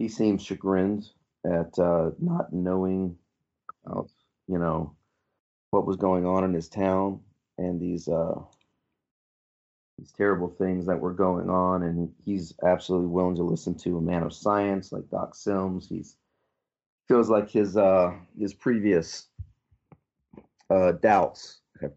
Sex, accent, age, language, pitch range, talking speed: male, American, 40-59, English, 90-100 Hz, 140 wpm